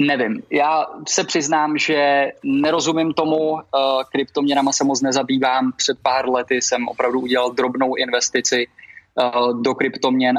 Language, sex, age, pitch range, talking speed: Czech, male, 20-39, 125-145 Hz, 120 wpm